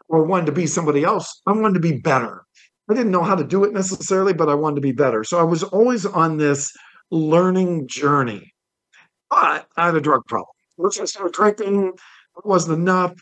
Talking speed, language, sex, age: 205 wpm, English, male, 50-69